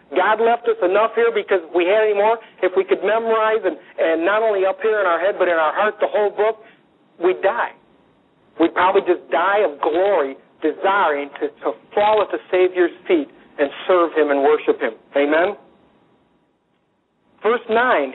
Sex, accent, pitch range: male, American, 185-245 Hz